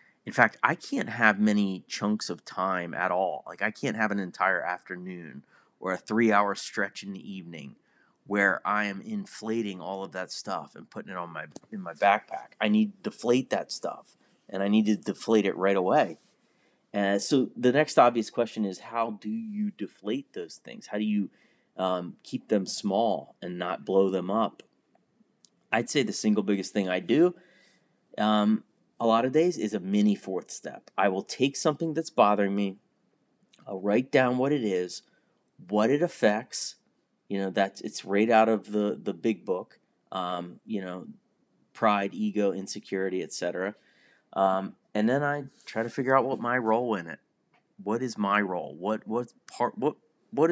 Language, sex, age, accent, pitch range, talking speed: English, male, 30-49, American, 95-125 Hz, 185 wpm